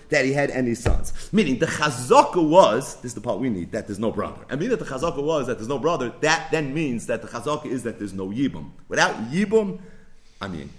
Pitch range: 145-200 Hz